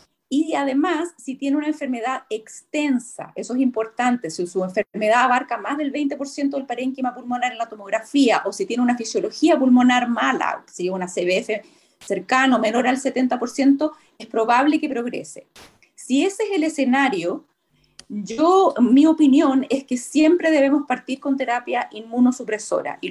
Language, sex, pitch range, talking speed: Spanish, female, 230-285 Hz, 155 wpm